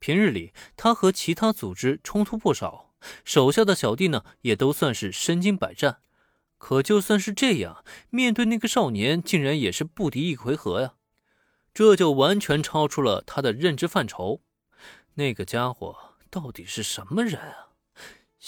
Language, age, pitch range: Chinese, 20-39, 135-210 Hz